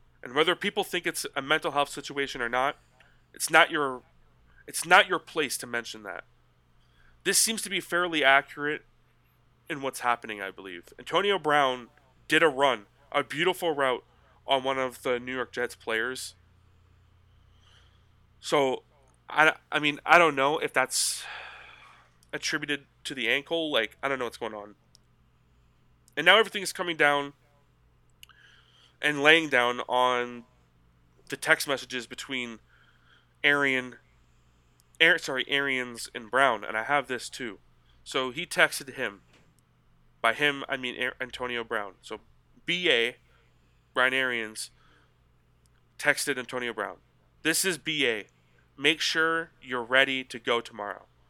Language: English